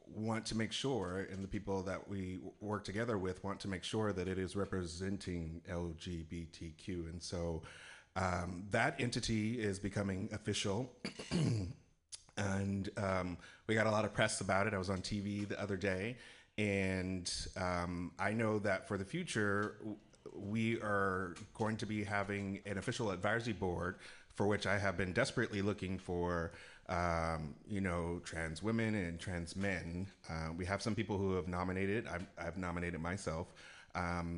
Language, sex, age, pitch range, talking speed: English, male, 30-49, 85-105 Hz, 160 wpm